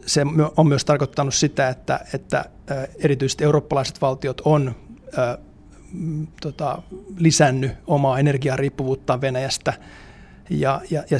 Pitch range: 135-150 Hz